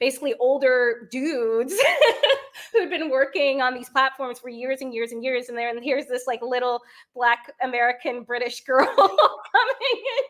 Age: 20-39